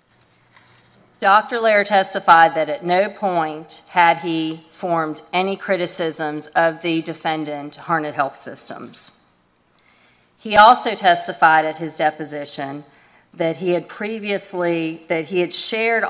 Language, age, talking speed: English, 40-59, 120 wpm